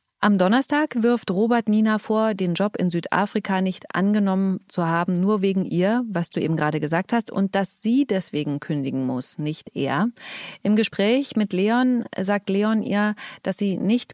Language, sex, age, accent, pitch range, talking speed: German, female, 30-49, German, 175-215 Hz, 175 wpm